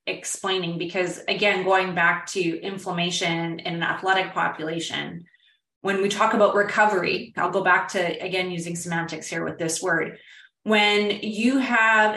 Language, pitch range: English, 175-210 Hz